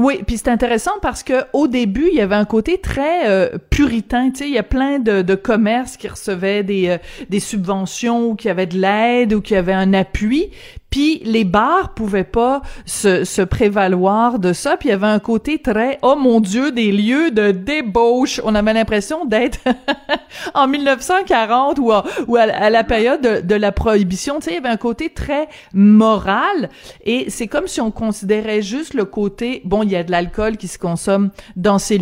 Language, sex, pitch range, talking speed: French, female, 190-250 Hz, 205 wpm